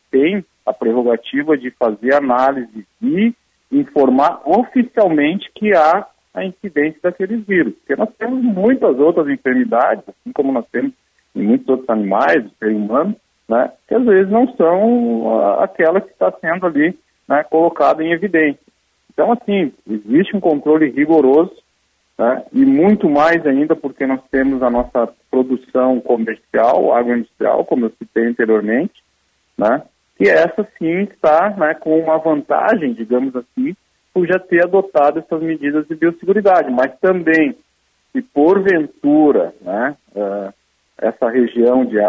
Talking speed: 145 wpm